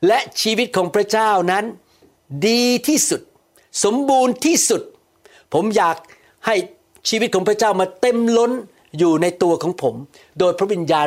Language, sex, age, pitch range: Thai, male, 60-79, 160-215 Hz